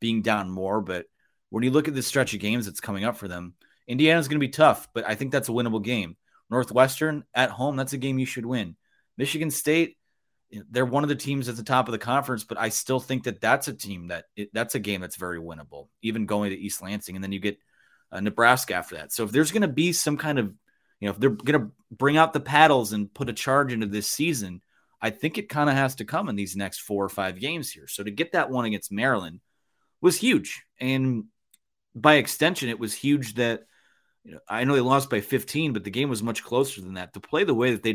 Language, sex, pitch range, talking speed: English, male, 105-140 Hz, 255 wpm